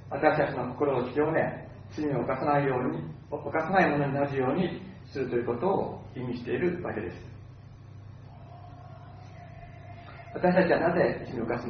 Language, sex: Japanese, male